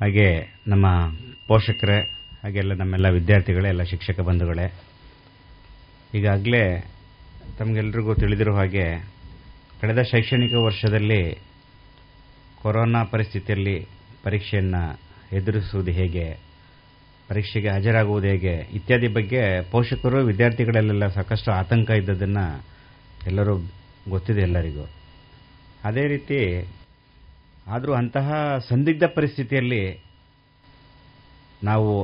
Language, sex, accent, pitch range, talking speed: Kannada, male, native, 95-115 Hz, 75 wpm